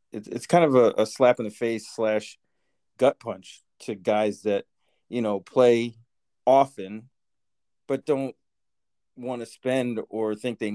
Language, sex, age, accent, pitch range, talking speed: English, male, 40-59, American, 95-115 Hz, 145 wpm